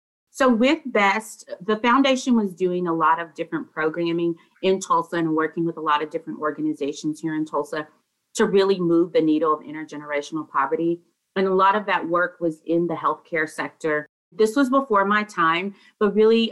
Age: 30-49